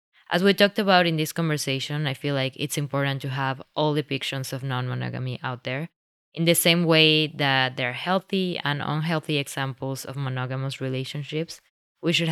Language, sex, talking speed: English, female, 175 wpm